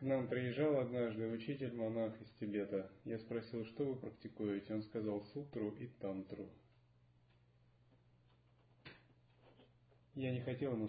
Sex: male